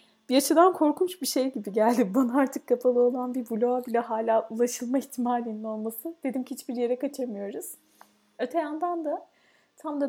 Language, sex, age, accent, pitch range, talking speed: Turkish, female, 30-49, native, 220-270 Hz, 160 wpm